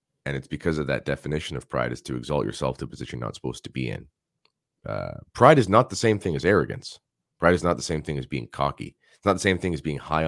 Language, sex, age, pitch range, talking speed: English, male, 30-49, 65-85 Hz, 275 wpm